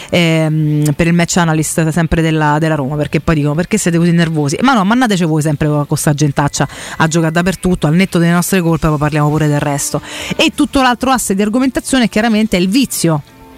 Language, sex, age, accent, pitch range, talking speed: Italian, female, 30-49, native, 155-190 Hz, 210 wpm